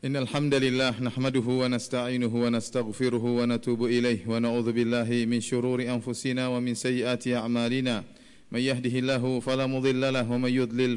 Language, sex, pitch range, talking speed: Indonesian, male, 120-130 Hz, 155 wpm